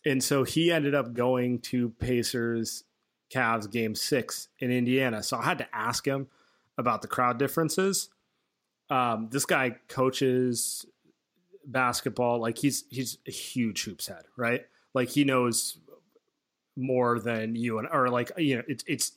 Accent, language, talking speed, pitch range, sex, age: American, English, 150 wpm, 115-135 Hz, male, 30-49